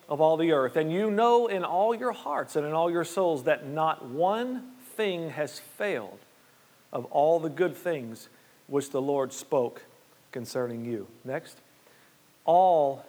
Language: English